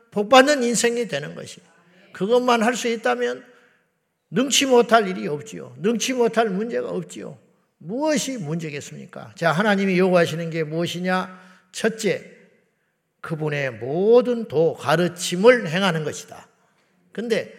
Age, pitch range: 50-69, 165-230 Hz